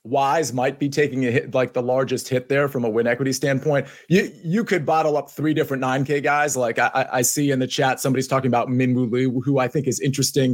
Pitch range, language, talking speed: 135-175 Hz, English, 240 wpm